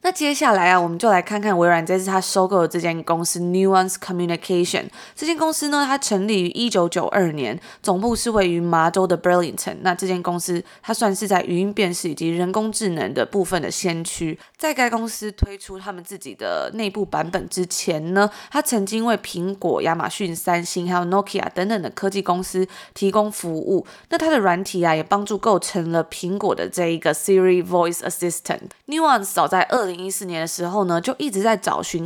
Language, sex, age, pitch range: Chinese, female, 20-39, 175-210 Hz